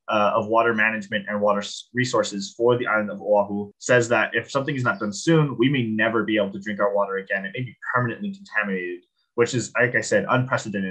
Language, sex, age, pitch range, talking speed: English, male, 20-39, 105-130 Hz, 225 wpm